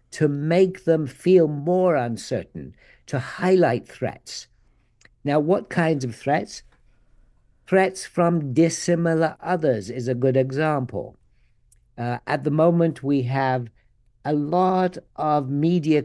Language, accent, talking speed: English, British, 120 wpm